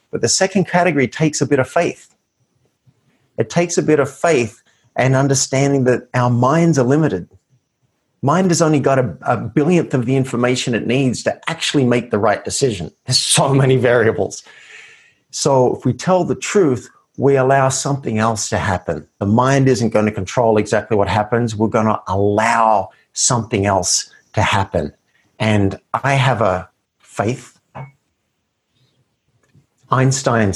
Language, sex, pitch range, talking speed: English, male, 110-135 Hz, 155 wpm